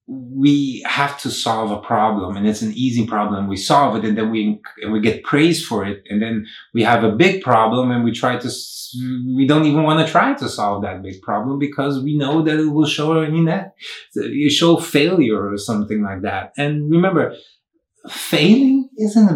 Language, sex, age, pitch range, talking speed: English, male, 30-49, 110-150 Hz, 210 wpm